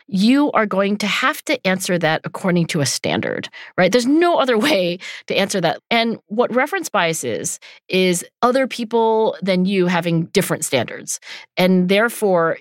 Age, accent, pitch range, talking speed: 40-59, American, 165-210 Hz, 165 wpm